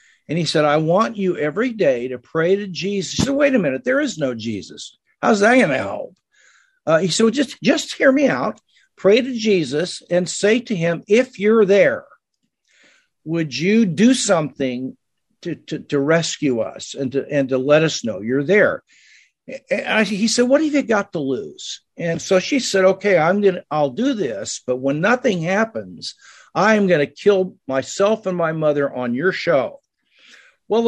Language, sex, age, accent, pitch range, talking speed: English, male, 50-69, American, 165-235 Hz, 190 wpm